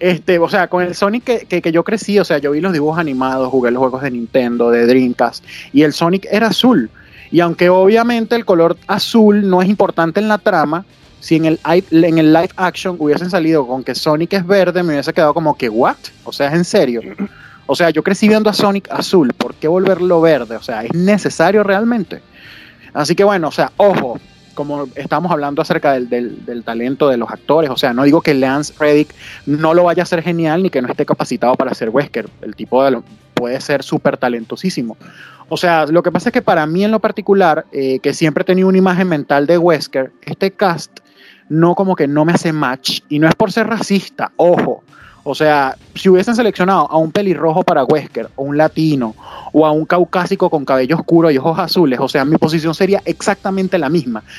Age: 30-49